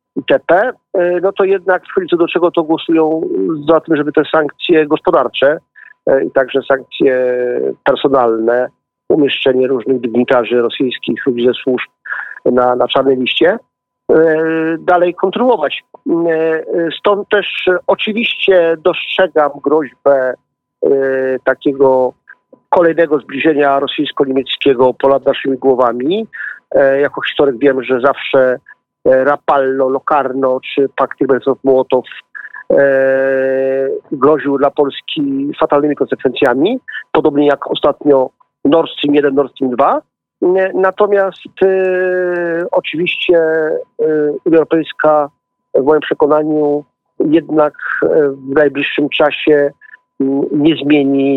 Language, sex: Polish, male